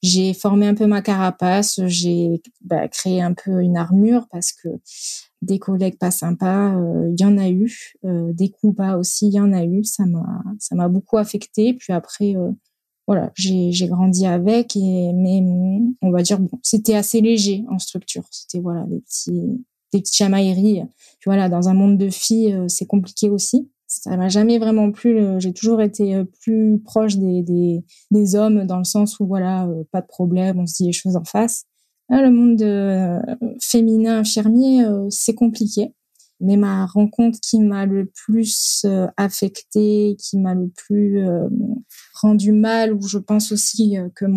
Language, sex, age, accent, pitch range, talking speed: French, female, 20-39, French, 185-215 Hz, 185 wpm